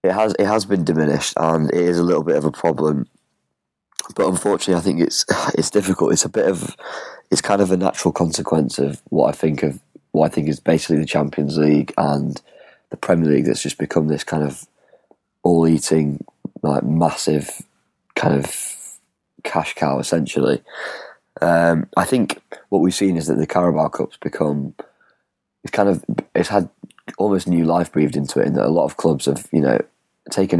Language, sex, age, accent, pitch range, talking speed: English, male, 20-39, British, 75-90 Hz, 190 wpm